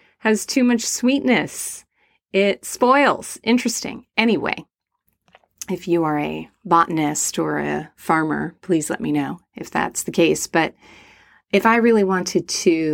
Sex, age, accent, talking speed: female, 30-49, American, 140 wpm